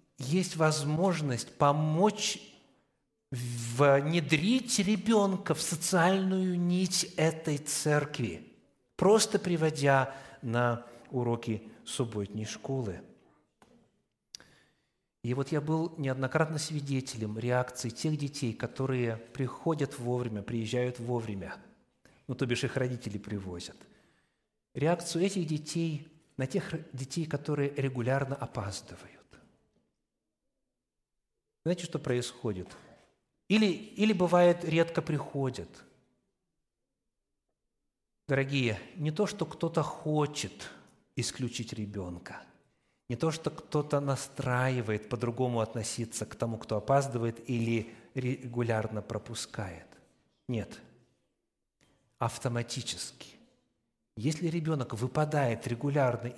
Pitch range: 120-160 Hz